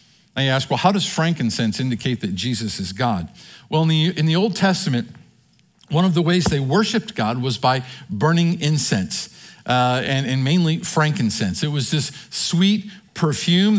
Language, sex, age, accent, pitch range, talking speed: English, male, 50-69, American, 135-180 Hz, 165 wpm